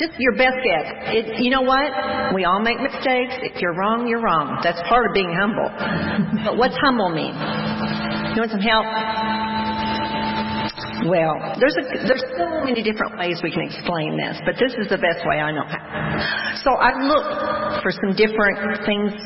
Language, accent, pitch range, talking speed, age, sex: English, American, 185-250 Hz, 180 wpm, 50-69, female